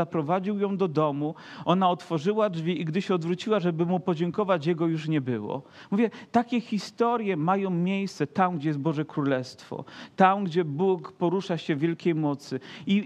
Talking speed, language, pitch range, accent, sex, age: 165 wpm, Polish, 165-210 Hz, native, male, 40-59